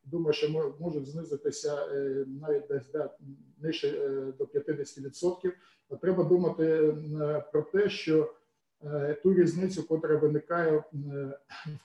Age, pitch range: 50-69, 145-170 Hz